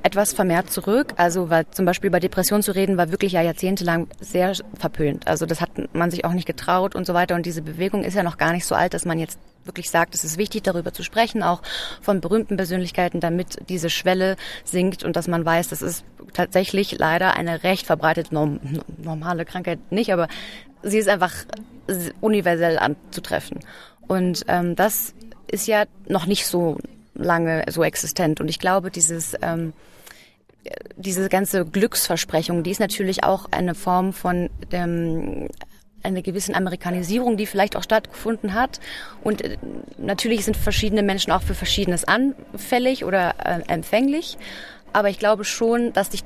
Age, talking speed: 30-49, 170 wpm